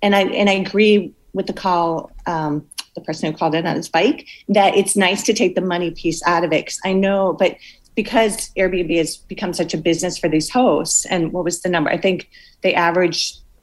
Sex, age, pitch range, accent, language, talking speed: female, 40-59, 160-195 Hz, American, English, 225 wpm